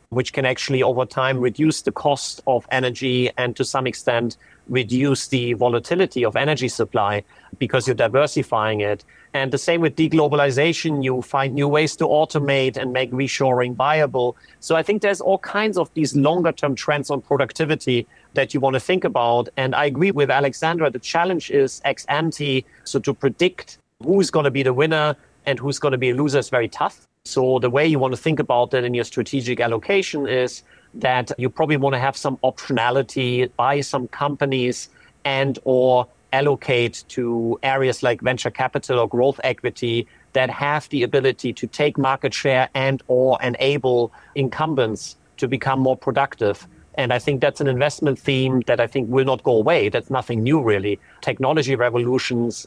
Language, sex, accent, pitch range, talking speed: English, male, German, 125-145 Hz, 180 wpm